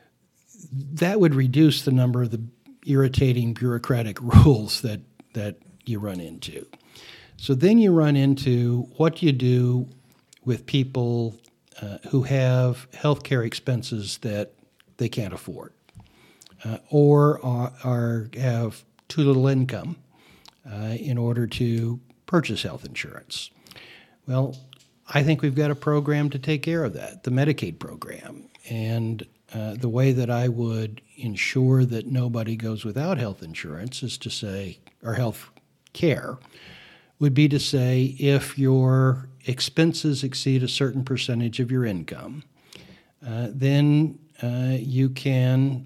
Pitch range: 120-145 Hz